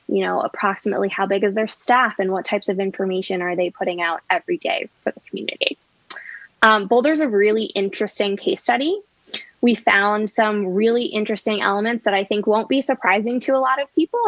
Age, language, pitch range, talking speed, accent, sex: 10-29, English, 195-230 Hz, 195 wpm, American, female